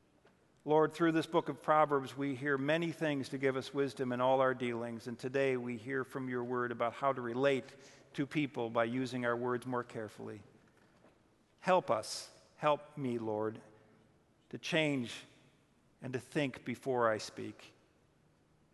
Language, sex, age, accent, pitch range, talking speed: English, male, 50-69, American, 120-140 Hz, 160 wpm